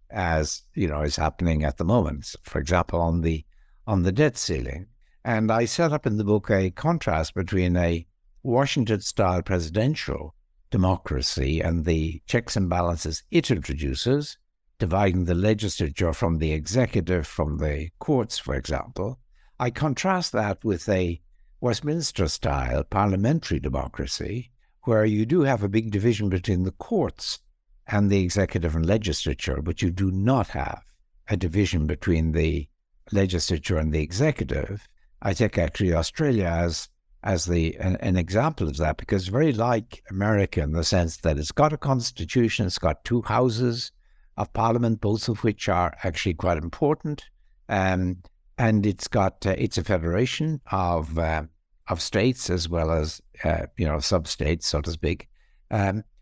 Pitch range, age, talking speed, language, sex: 80-110 Hz, 60-79, 155 wpm, English, male